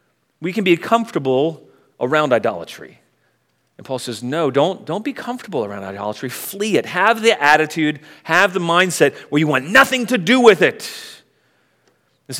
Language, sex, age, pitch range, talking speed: English, male, 40-59, 145-195 Hz, 160 wpm